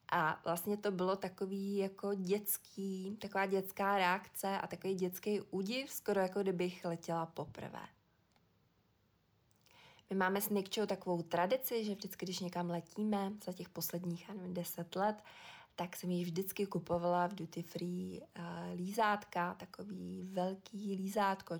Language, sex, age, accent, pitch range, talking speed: Czech, female, 20-39, native, 170-195 Hz, 135 wpm